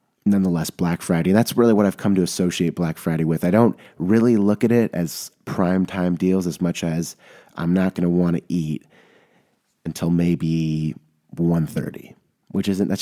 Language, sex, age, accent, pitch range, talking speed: English, male, 30-49, American, 80-95 Hz, 185 wpm